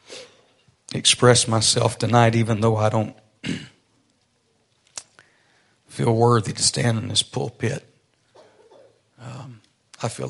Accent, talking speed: American, 100 wpm